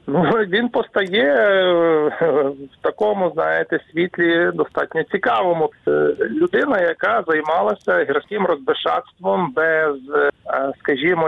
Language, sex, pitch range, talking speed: Ukrainian, male, 140-175 Hz, 80 wpm